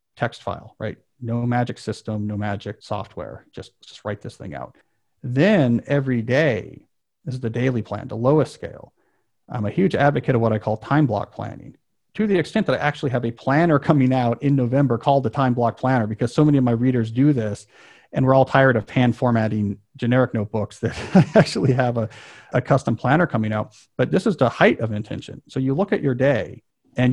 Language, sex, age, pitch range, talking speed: English, male, 40-59, 115-145 Hz, 210 wpm